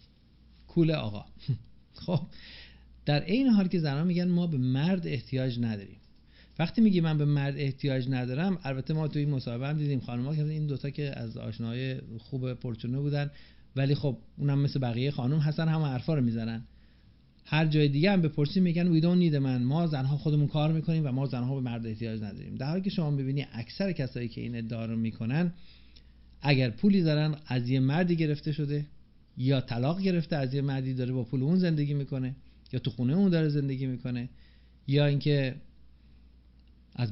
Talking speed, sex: 175 wpm, male